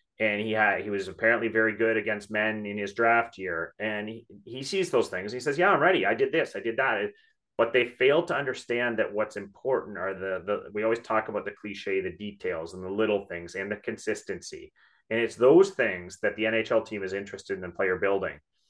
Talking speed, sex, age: 230 wpm, male, 30-49